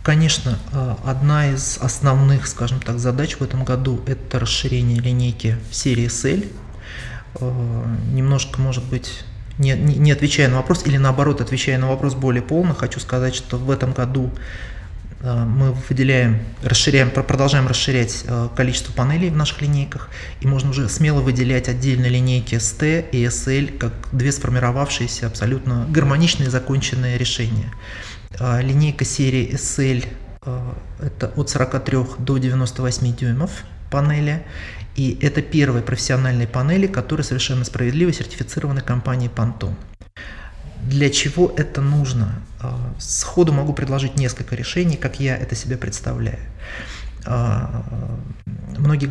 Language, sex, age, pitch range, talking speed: Russian, male, 30-49, 120-140 Hz, 125 wpm